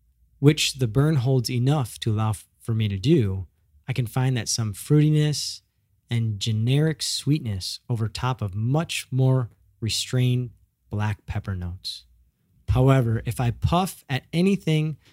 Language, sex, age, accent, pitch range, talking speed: English, male, 20-39, American, 105-130 Hz, 140 wpm